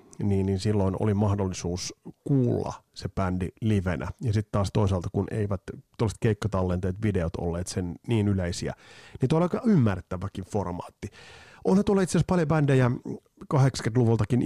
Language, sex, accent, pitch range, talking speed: Finnish, male, native, 95-115 Hz, 135 wpm